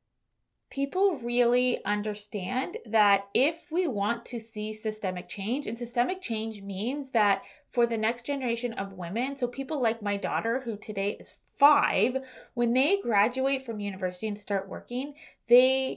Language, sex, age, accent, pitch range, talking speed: English, female, 20-39, American, 200-250 Hz, 150 wpm